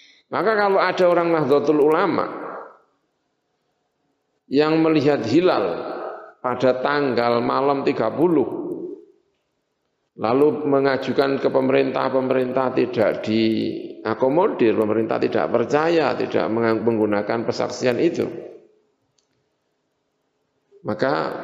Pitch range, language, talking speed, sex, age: 110-155 Hz, Indonesian, 75 wpm, male, 50-69